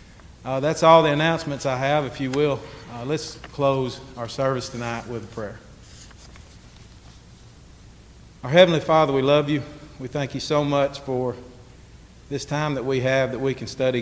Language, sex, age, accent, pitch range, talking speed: English, male, 40-59, American, 115-135 Hz, 170 wpm